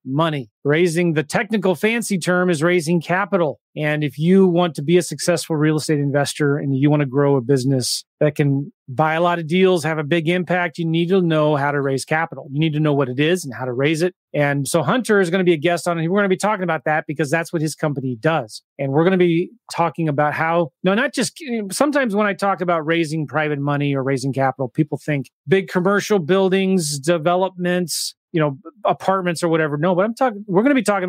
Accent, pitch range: American, 150-185 Hz